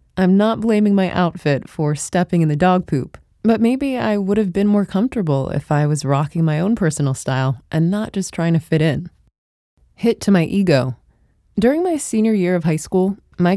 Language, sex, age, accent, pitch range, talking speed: English, female, 20-39, American, 155-205 Hz, 205 wpm